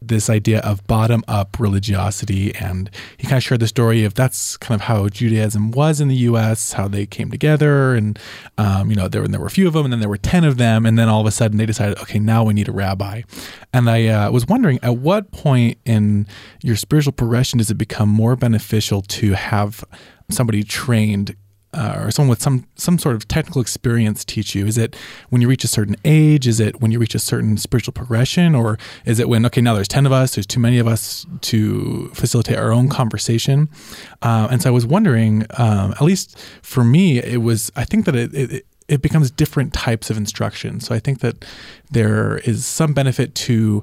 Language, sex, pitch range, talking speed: English, male, 110-130 Hz, 225 wpm